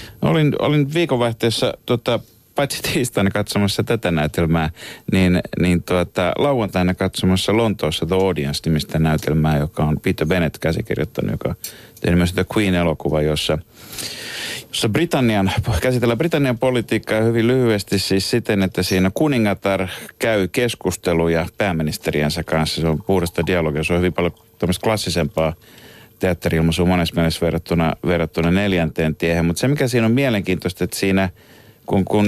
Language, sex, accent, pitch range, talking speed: Finnish, male, native, 85-115 Hz, 135 wpm